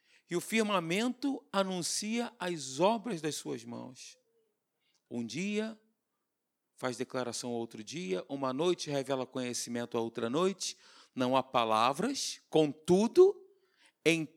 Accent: Brazilian